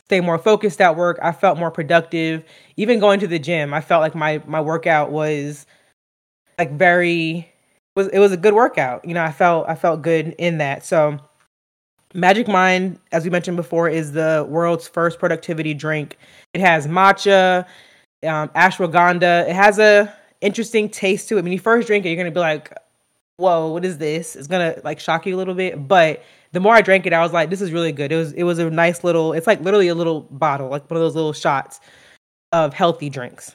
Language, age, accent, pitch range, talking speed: English, 20-39, American, 160-185 Hz, 215 wpm